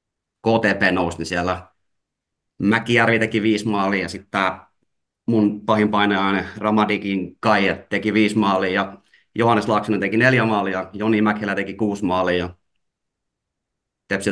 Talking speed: 125 wpm